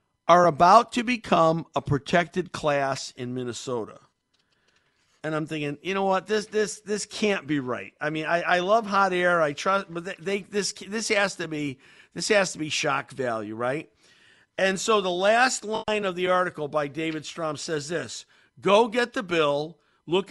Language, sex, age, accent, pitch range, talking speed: English, male, 50-69, American, 140-200 Hz, 185 wpm